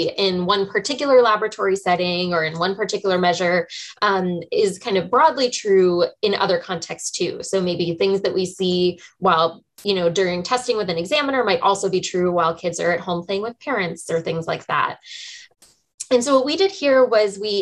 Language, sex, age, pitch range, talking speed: English, female, 20-39, 185-250 Hz, 200 wpm